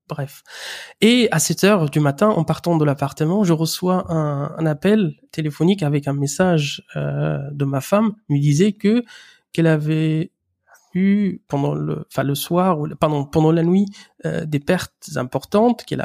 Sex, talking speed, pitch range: male, 165 wpm, 145-185 Hz